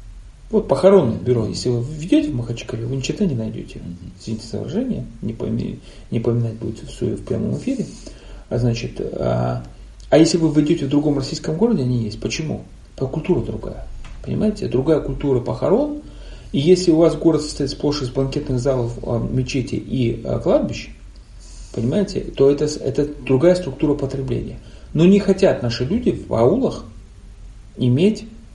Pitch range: 115-150 Hz